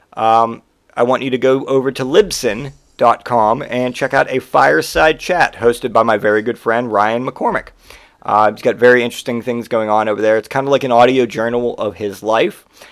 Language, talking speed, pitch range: English, 200 wpm, 105-130 Hz